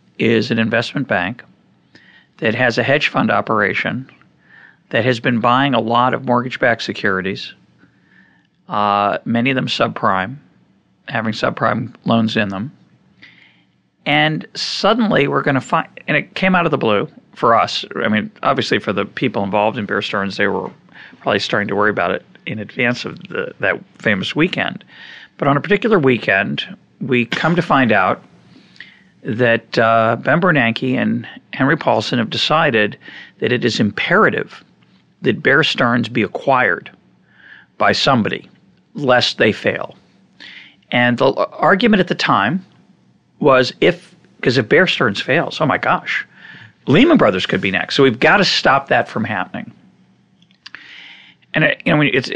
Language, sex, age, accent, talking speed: English, male, 50-69, American, 155 wpm